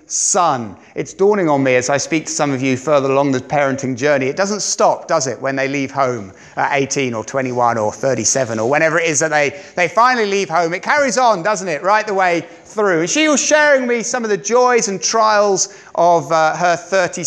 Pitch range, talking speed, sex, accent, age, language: 135-195 Hz, 225 wpm, male, British, 30-49, English